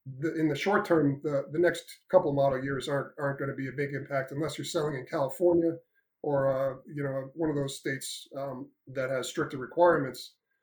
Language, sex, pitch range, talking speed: English, male, 135-155 Hz, 210 wpm